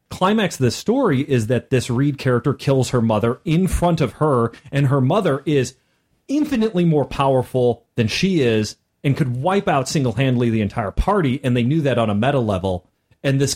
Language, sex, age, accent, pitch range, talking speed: English, male, 30-49, American, 120-190 Hz, 195 wpm